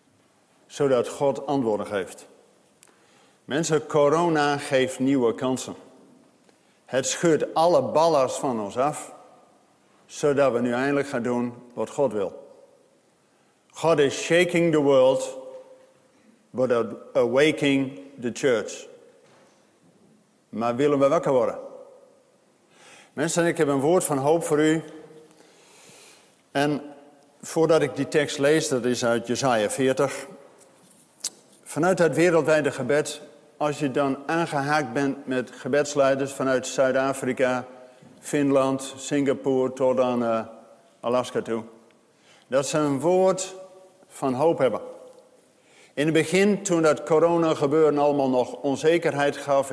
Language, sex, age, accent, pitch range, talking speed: Dutch, male, 50-69, Dutch, 135-165 Hz, 115 wpm